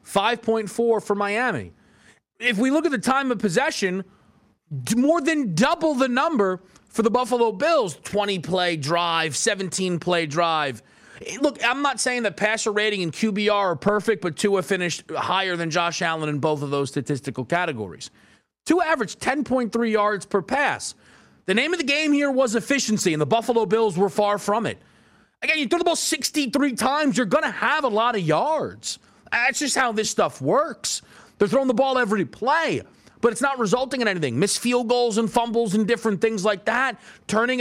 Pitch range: 195-250 Hz